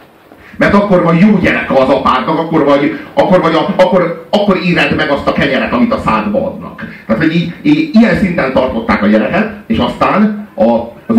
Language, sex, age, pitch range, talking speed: Hungarian, male, 30-49, 140-220 Hz, 190 wpm